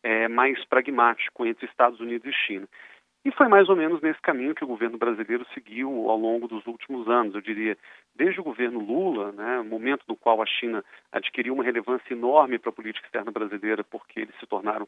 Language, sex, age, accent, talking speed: Portuguese, male, 40-59, Brazilian, 200 wpm